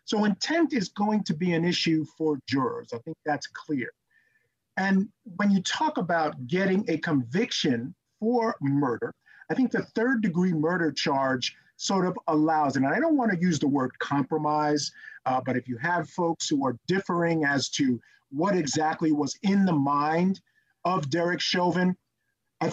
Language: English